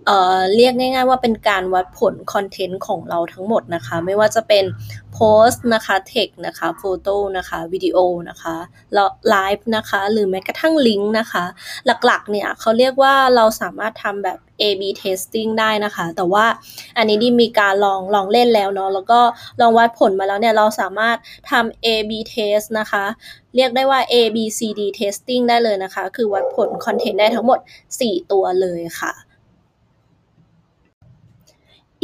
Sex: female